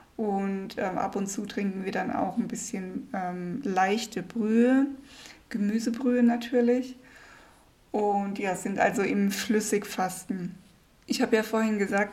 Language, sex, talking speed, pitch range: German, female, 135 wpm, 205-235 Hz